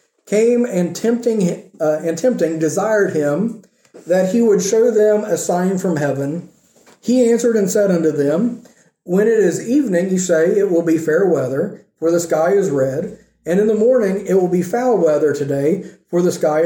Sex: male